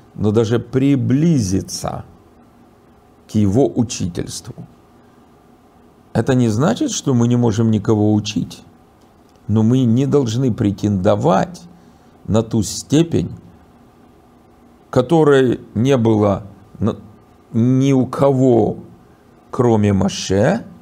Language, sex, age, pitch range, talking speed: Russian, male, 50-69, 105-140 Hz, 90 wpm